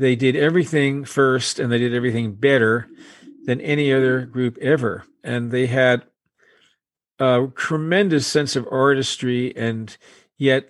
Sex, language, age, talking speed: male, English, 50-69, 135 wpm